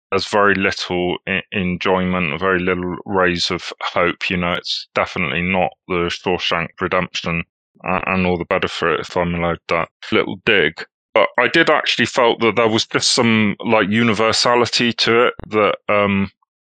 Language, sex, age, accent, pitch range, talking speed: English, male, 20-39, British, 90-105 Hz, 160 wpm